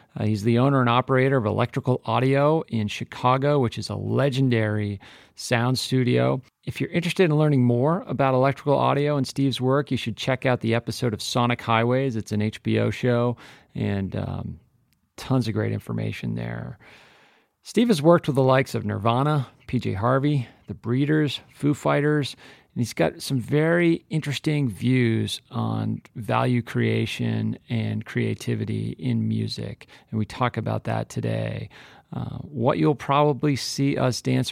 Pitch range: 110-135 Hz